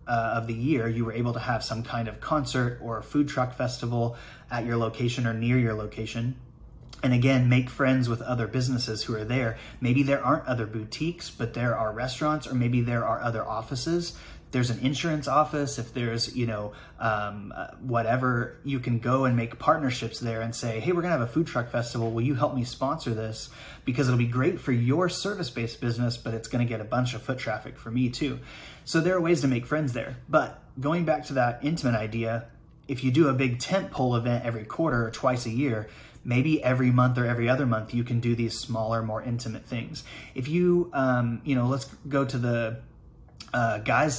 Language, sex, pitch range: English, male, 115-135 Hz